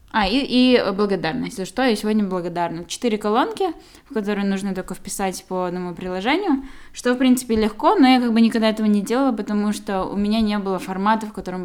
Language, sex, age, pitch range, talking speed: Russian, female, 10-29, 185-225 Hz, 205 wpm